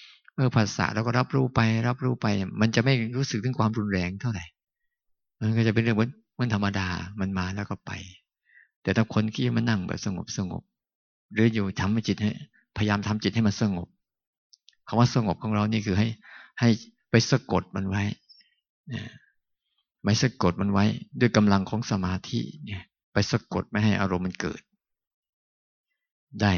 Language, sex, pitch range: Thai, male, 95-115 Hz